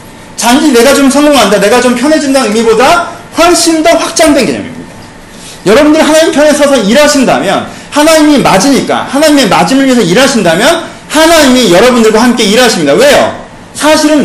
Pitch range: 225-290 Hz